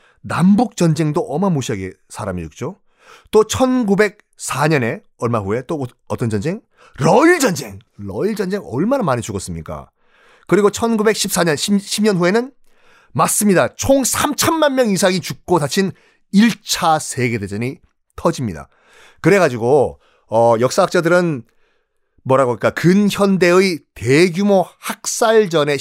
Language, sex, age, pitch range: Korean, male, 30-49, 125-200 Hz